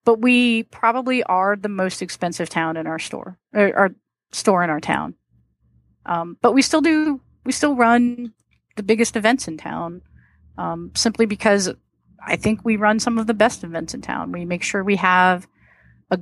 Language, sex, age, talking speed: English, female, 30-49, 185 wpm